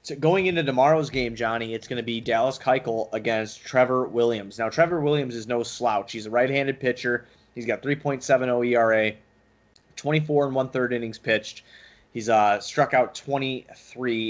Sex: male